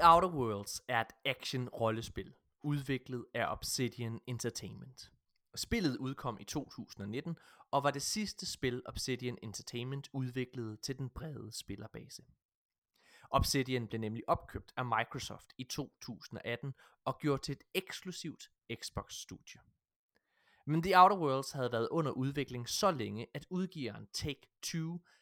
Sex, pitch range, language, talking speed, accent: male, 115-145 Hz, Danish, 125 wpm, native